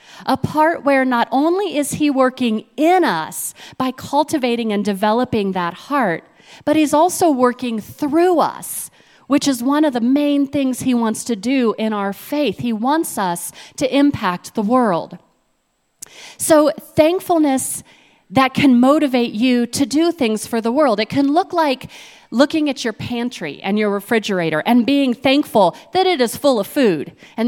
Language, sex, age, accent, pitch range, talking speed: English, female, 40-59, American, 230-300 Hz, 165 wpm